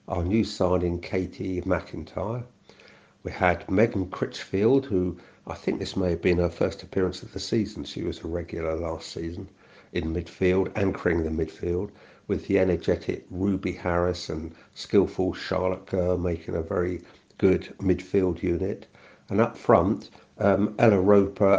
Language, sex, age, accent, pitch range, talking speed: English, male, 60-79, British, 85-95 Hz, 150 wpm